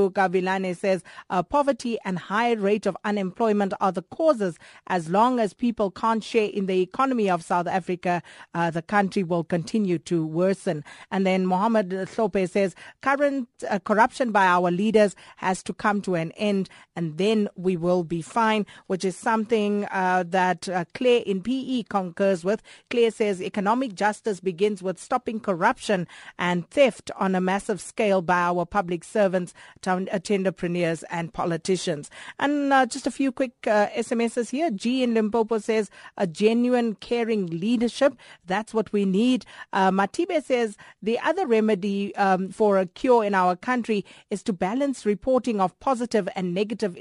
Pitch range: 185-230 Hz